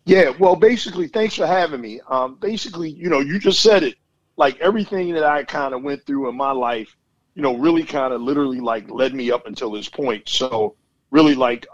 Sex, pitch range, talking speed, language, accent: male, 110-130 Hz, 215 wpm, English, American